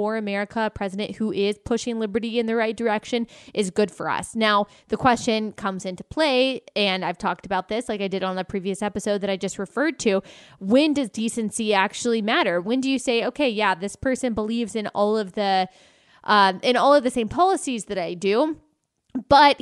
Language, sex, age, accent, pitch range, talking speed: English, female, 20-39, American, 200-250 Hz, 210 wpm